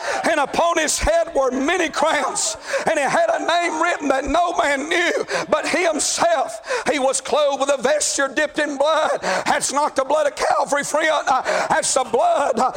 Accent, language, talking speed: American, English, 180 wpm